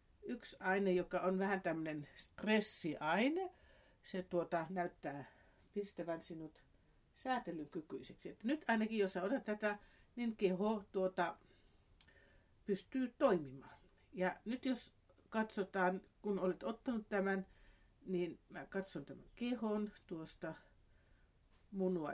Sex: female